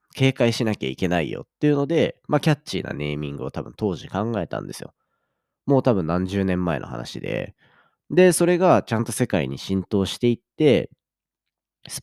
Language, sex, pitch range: Japanese, male, 95-140 Hz